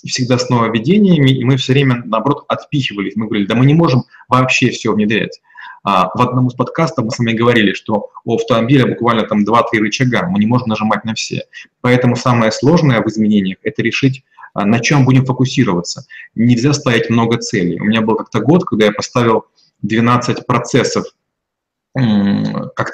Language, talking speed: Russian, 175 wpm